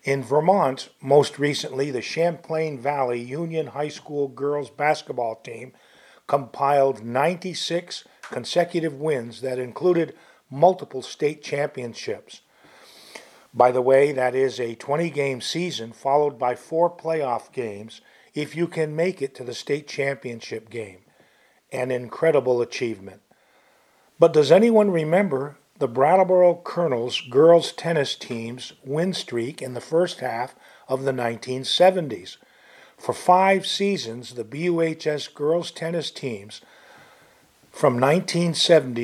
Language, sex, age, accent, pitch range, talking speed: English, male, 50-69, American, 130-170 Hz, 120 wpm